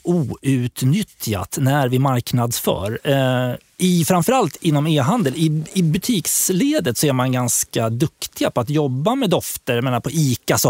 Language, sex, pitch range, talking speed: Swedish, male, 120-160 Hz, 135 wpm